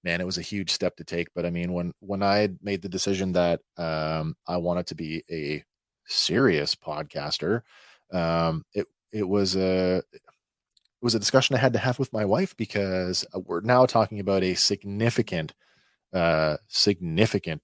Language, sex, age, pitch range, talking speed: English, male, 30-49, 85-120 Hz, 175 wpm